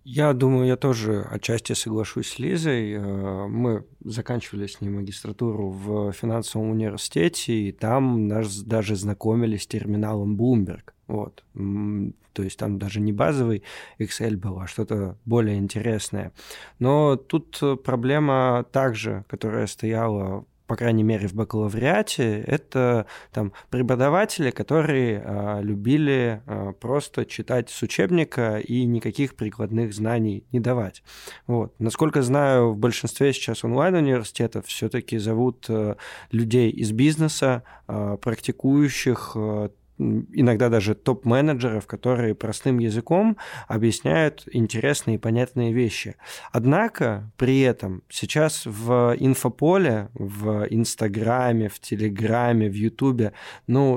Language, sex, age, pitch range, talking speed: Russian, male, 20-39, 105-130 Hz, 110 wpm